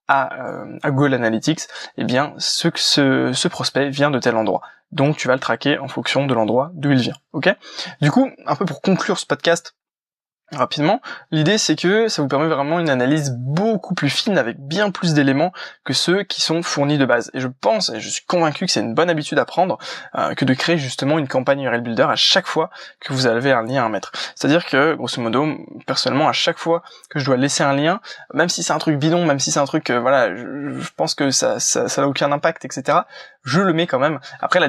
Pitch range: 130-160 Hz